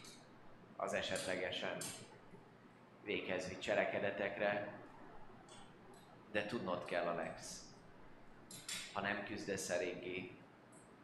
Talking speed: 65 wpm